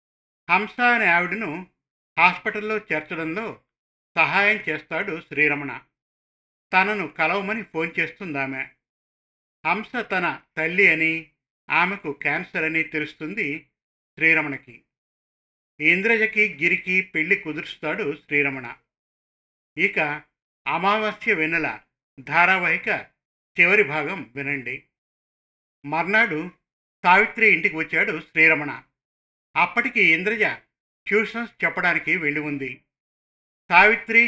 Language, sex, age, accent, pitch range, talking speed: Telugu, male, 50-69, native, 145-190 Hz, 80 wpm